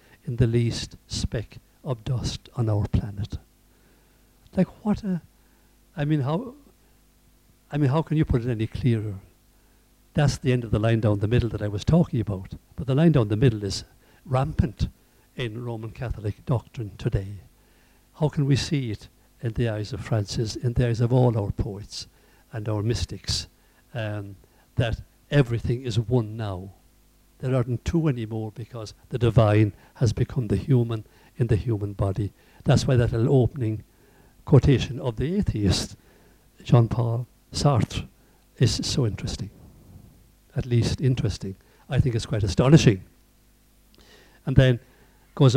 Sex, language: male, English